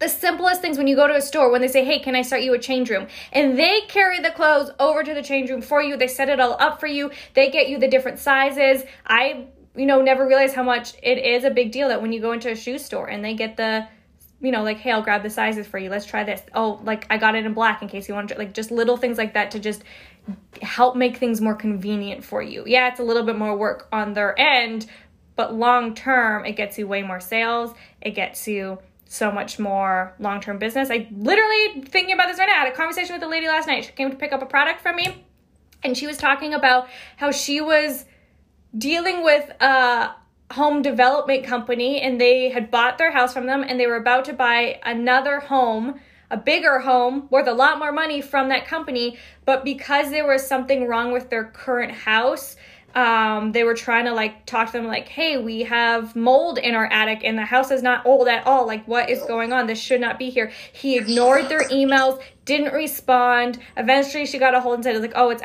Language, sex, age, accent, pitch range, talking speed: English, female, 10-29, American, 230-275 Hz, 240 wpm